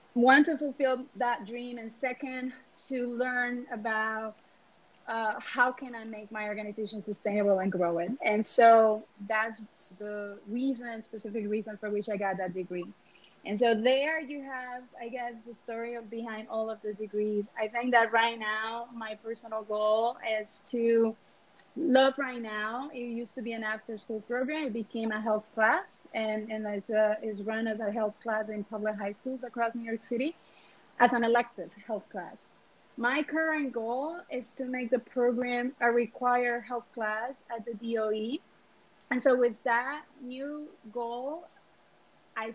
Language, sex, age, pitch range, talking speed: English, female, 30-49, 215-245 Hz, 165 wpm